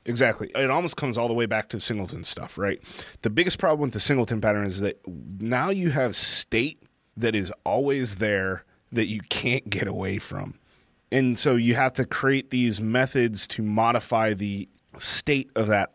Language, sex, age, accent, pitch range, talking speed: English, male, 30-49, American, 105-130 Hz, 185 wpm